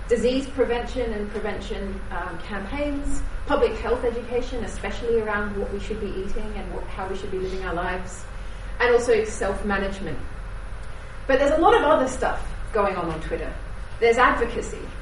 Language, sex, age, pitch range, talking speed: English, female, 30-49, 205-245 Hz, 160 wpm